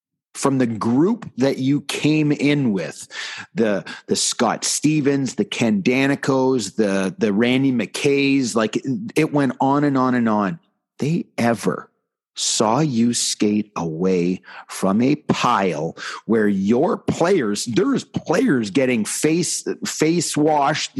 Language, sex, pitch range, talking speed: English, male, 115-150 Hz, 130 wpm